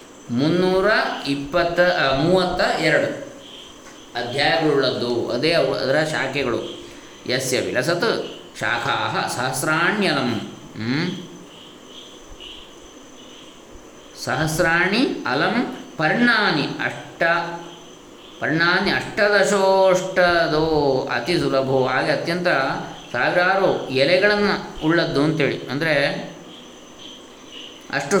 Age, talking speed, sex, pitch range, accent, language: 20-39, 60 wpm, male, 135-180 Hz, native, Kannada